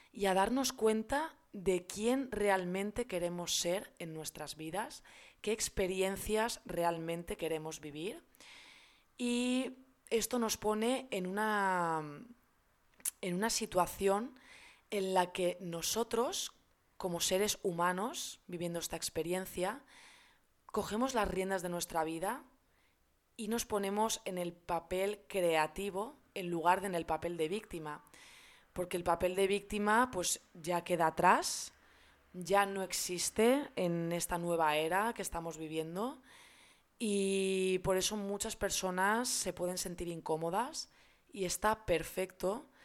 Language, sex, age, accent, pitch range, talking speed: Spanish, female, 20-39, Spanish, 170-215 Hz, 125 wpm